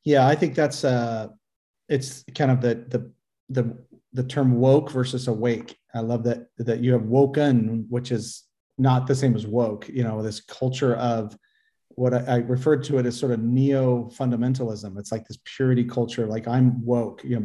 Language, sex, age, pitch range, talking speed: English, male, 40-59, 120-135 Hz, 195 wpm